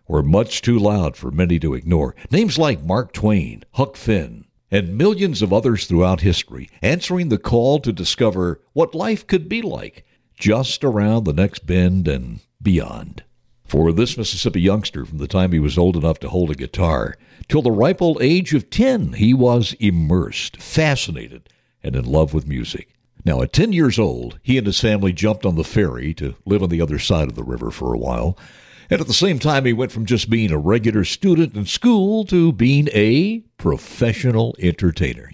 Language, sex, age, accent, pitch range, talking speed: English, male, 60-79, American, 90-130 Hz, 190 wpm